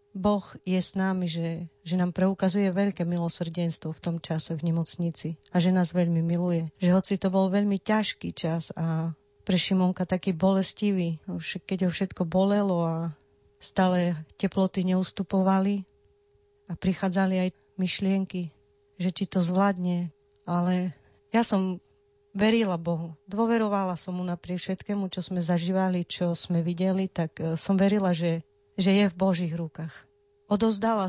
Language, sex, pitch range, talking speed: Slovak, female, 165-195 Hz, 145 wpm